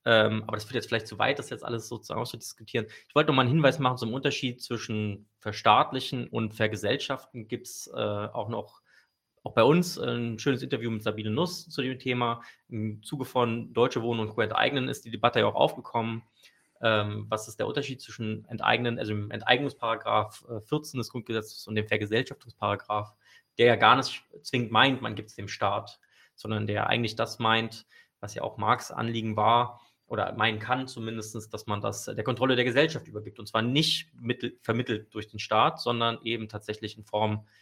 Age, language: 20-39, German